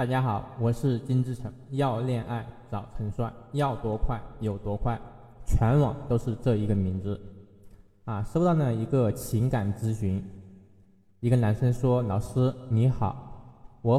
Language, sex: Chinese, male